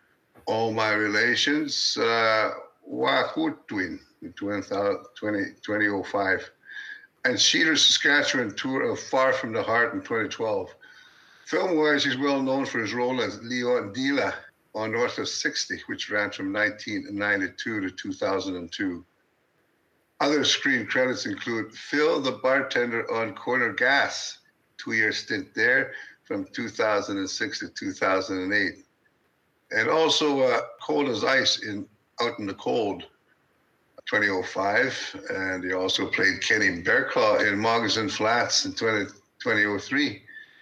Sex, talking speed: male, 120 wpm